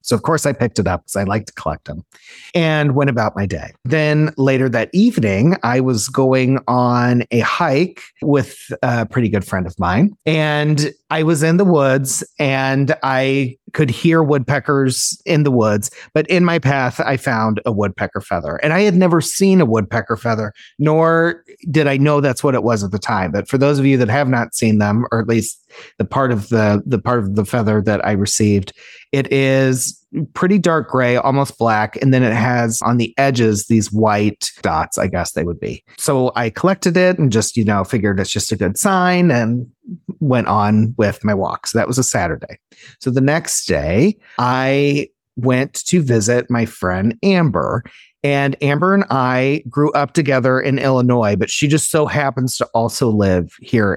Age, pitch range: 30-49, 110-145 Hz